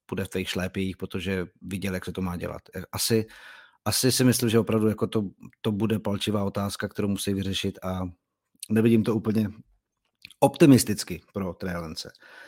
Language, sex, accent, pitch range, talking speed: Czech, male, native, 105-130 Hz, 160 wpm